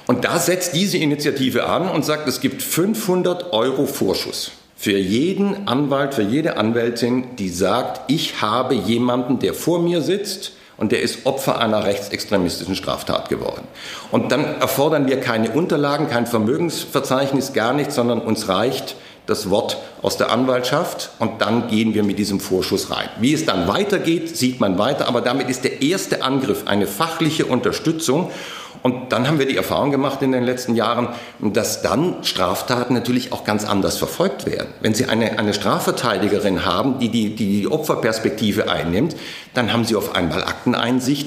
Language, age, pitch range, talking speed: German, 50-69, 100-140 Hz, 170 wpm